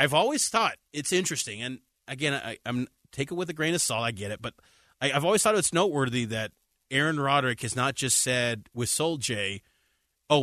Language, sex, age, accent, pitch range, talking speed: English, male, 30-49, American, 120-165 Hz, 200 wpm